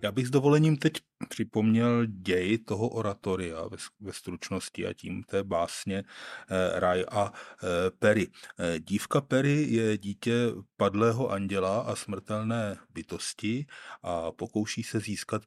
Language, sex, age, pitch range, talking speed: Czech, male, 30-49, 95-105 Hz, 120 wpm